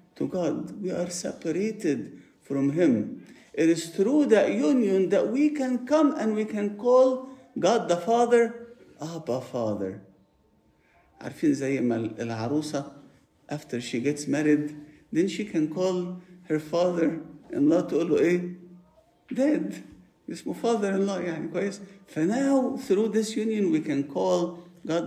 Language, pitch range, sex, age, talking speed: English, 140-215 Hz, male, 50-69, 135 wpm